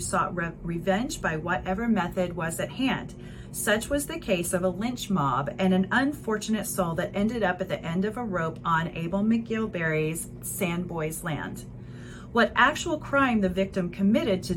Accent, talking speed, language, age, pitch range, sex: American, 175 wpm, English, 30-49, 170-220 Hz, female